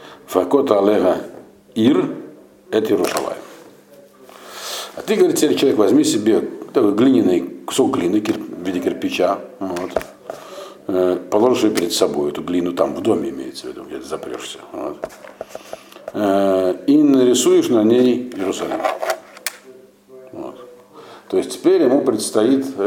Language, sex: Russian, male